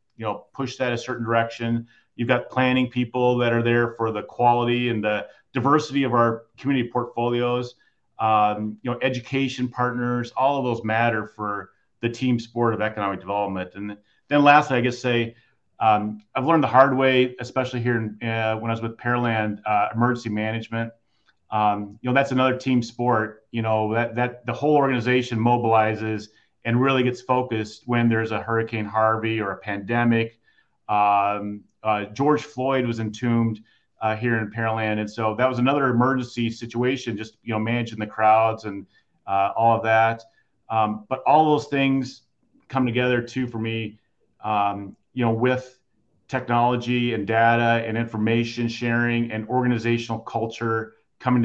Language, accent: English, American